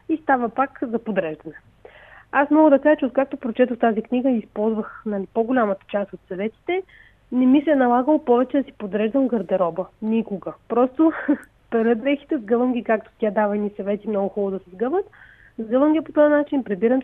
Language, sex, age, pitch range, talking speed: Bulgarian, female, 30-49, 215-265 Hz, 185 wpm